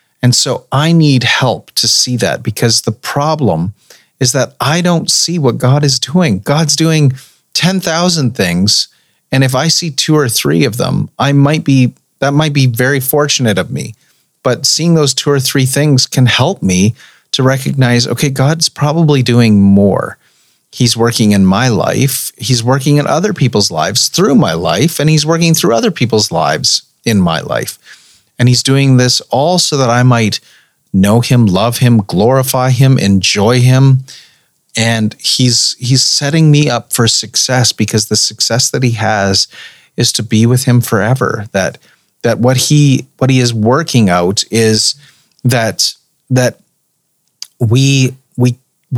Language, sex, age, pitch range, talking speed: English, male, 30-49, 110-145 Hz, 165 wpm